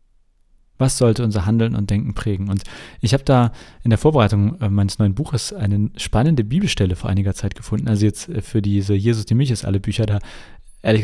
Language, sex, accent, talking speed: German, male, German, 195 wpm